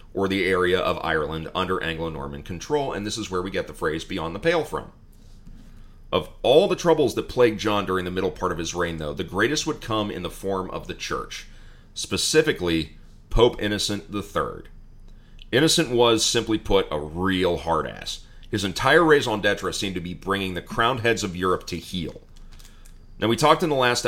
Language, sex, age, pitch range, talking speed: English, male, 30-49, 85-110 Hz, 195 wpm